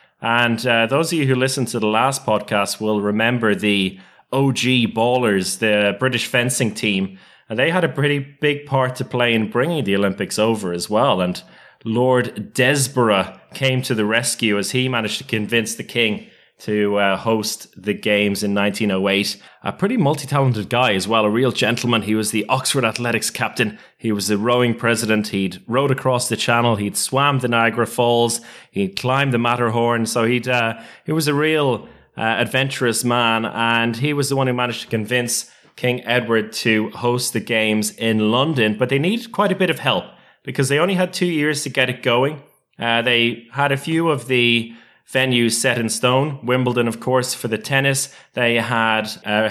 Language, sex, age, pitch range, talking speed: English, male, 20-39, 110-135 Hz, 185 wpm